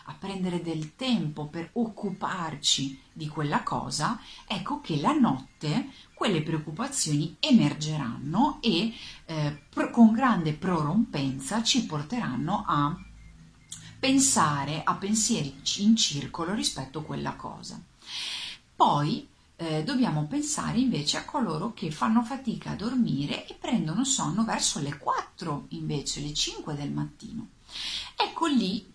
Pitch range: 150-235 Hz